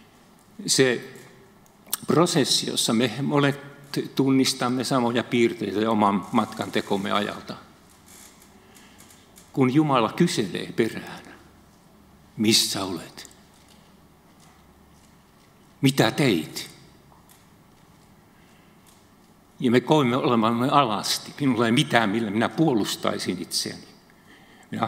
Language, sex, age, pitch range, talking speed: Finnish, male, 50-69, 110-155 Hz, 75 wpm